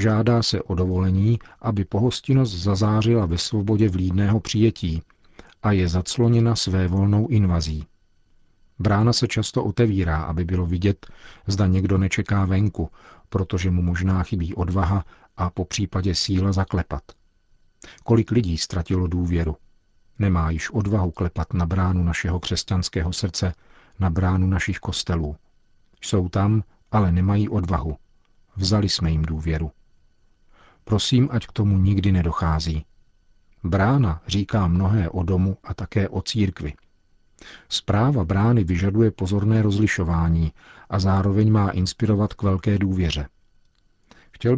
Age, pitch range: 40-59, 90-105 Hz